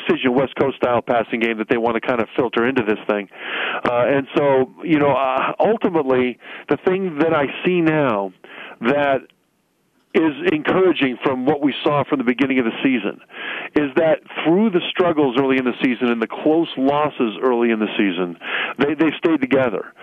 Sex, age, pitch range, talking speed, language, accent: male, 50-69, 125-150 Hz, 185 wpm, English, American